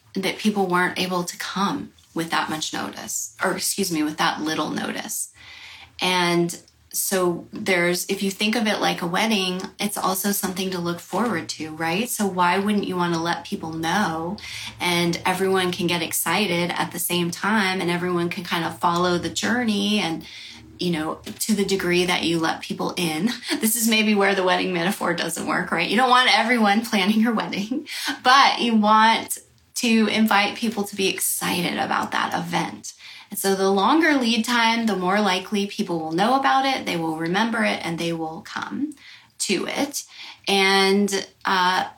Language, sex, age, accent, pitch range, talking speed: English, female, 30-49, American, 175-225 Hz, 185 wpm